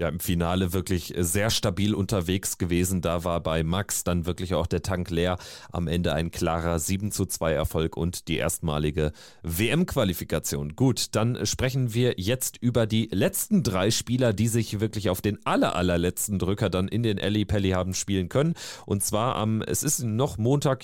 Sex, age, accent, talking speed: male, 30-49, German, 180 wpm